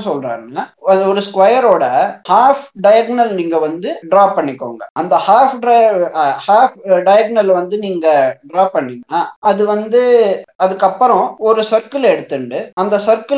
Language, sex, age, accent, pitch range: Tamil, male, 20-39, native, 180-230 Hz